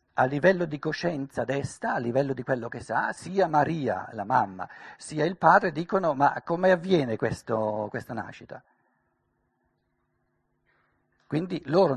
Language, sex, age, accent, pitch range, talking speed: Italian, male, 50-69, native, 120-165 Hz, 135 wpm